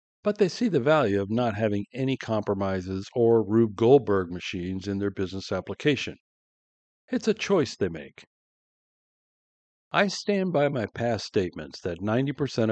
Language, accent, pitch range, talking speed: English, American, 95-130 Hz, 145 wpm